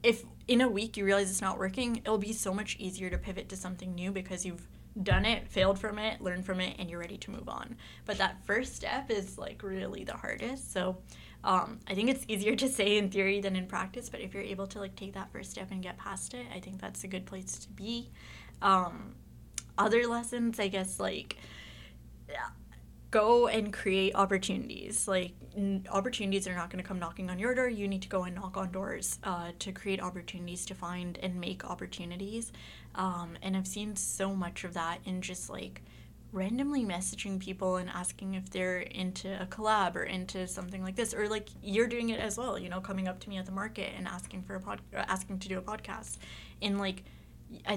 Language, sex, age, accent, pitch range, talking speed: English, female, 10-29, American, 185-210 Hz, 215 wpm